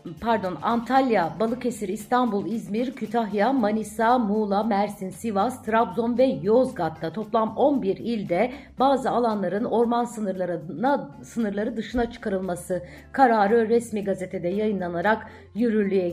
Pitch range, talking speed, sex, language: 190-225 Hz, 105 wpm, female, Turkish